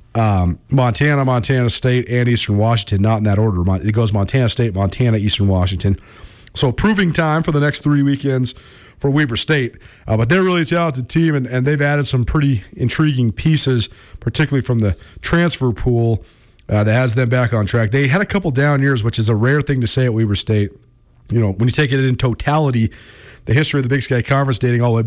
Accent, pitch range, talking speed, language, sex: American, 115-150 Hz, 220 wpm, English, male